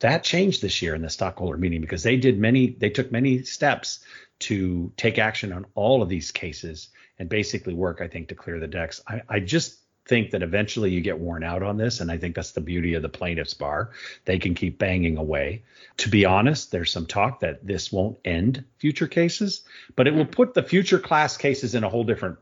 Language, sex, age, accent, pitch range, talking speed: English, male, 50-69, American, 90-125 Hz, 225 wpm